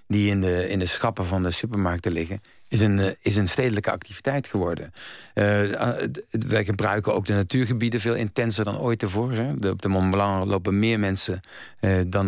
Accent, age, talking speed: Dutch, 50-69, 190 wpm